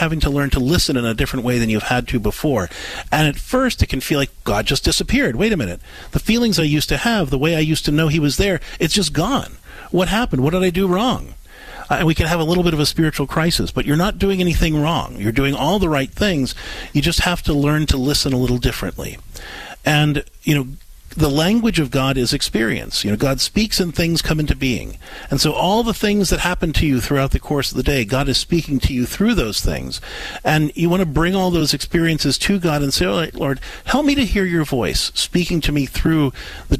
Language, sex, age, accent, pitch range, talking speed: English, male, 50-69, American, 130-170 Hz, 250 wpm